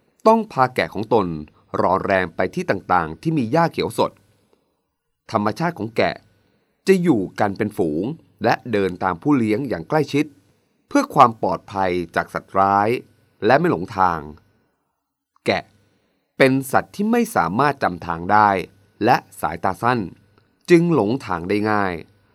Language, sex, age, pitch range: Thai, male, 30-49, 95-155 Hz